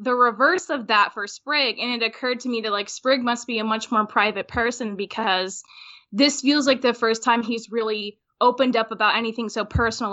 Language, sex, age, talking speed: English, female, 10-29, 215 wpm